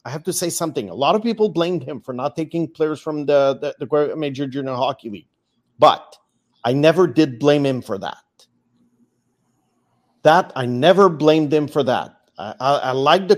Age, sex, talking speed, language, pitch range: 40-59, male, 195 wpm, English, 135-165 Hz